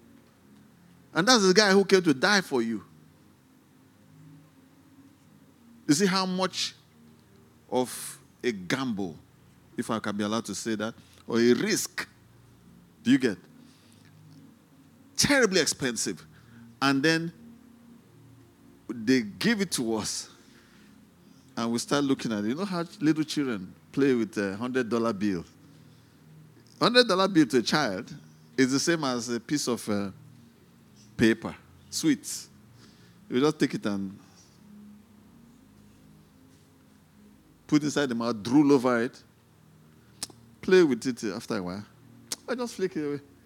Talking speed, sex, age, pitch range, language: 130 wpm, male, 50-69, 105-155 Hz, English